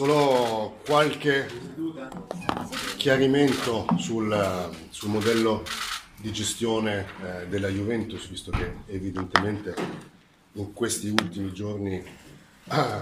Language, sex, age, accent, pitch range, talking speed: Italian, male, 40-59, native, 95-115 Hz, 90 wpm